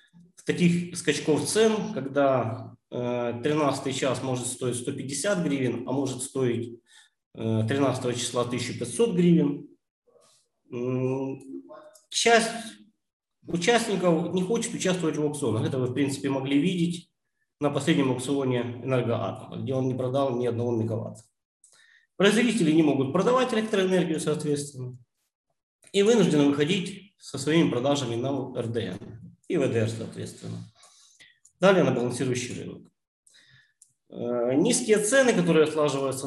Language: Ukrainian